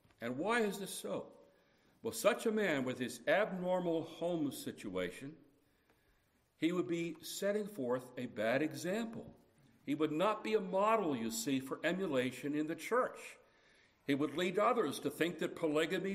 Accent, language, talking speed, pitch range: American, English, 160 wpm, 140-210 Hz